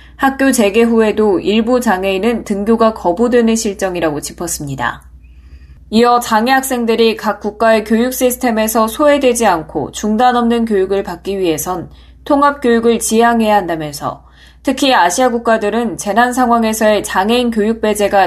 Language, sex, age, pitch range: Korean, female, 20-39, 180-235 Hz